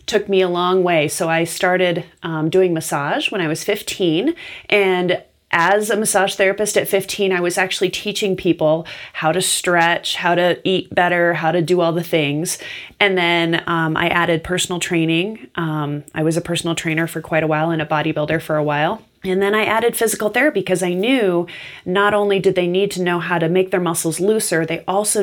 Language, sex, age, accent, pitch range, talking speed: English, female, 30-49, American, 160-195 Hz, 205 wpm